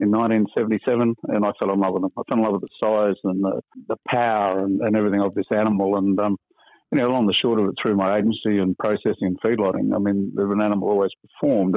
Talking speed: 250 wpm